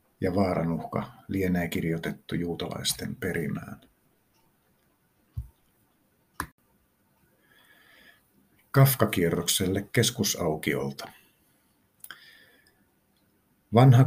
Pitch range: 85-105 Hz